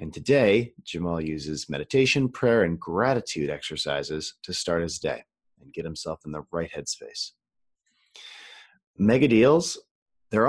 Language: English